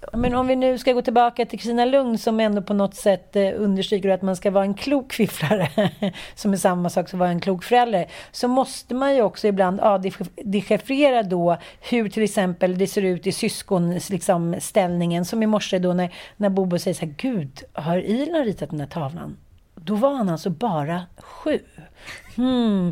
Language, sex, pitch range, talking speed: Swedish, female, 195-255 Hz, 195 wpm